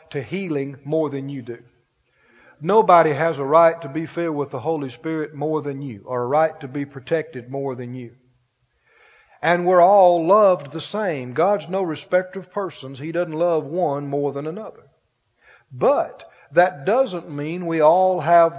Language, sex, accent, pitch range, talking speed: English, male, American, 145-185 Hz, 175 wpm